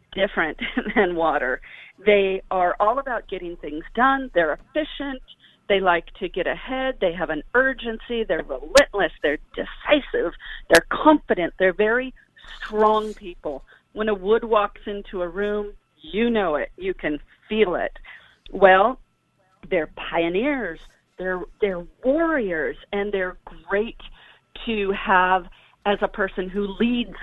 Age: 40-59